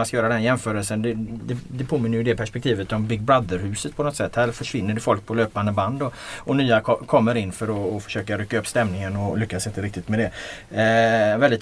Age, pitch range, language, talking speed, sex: 30-49, 105-120 Hz, Swedish, 240 wpm, male